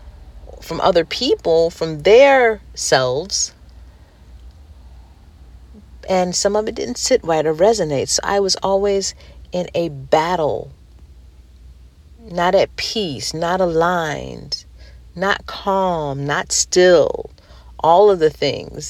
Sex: female